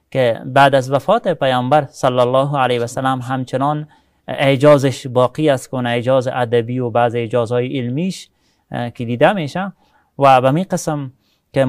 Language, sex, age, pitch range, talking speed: English, male, 30-49, 120-150 Hz, 140 wpm